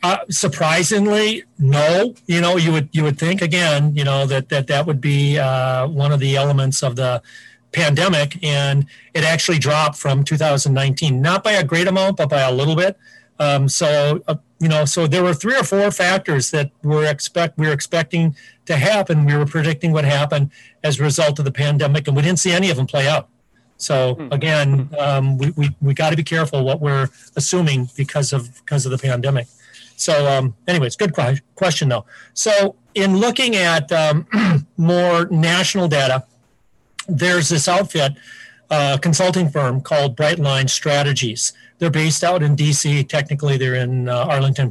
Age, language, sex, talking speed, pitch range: 40-59, English, male, 175 wpm, 135-165 Hz